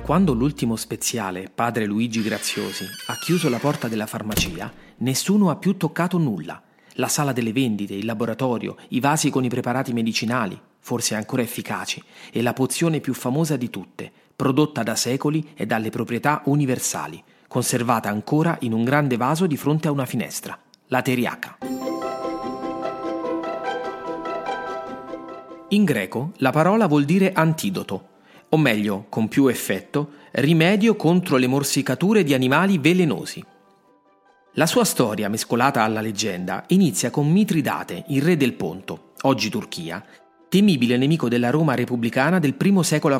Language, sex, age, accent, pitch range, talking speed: Italian, male, 40-59, native, 115-160 Hz, 140 wpm